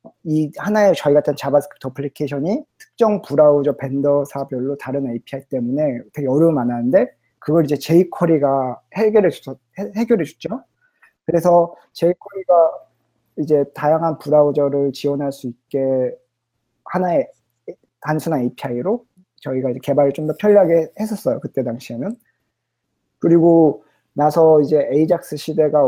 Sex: male